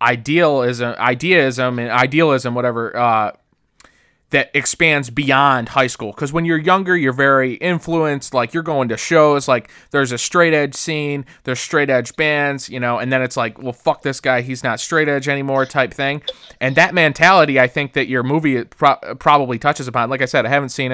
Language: English